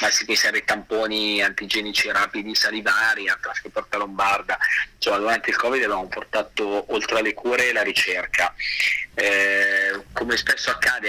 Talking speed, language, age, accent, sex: 155 wpm, Italian, 30-49, native, male